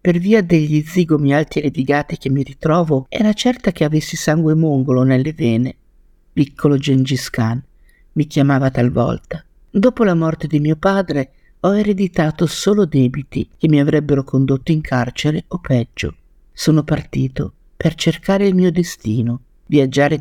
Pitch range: 130-170 Hz